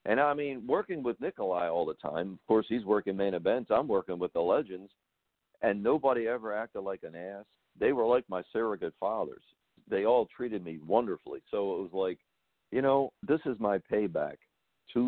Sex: male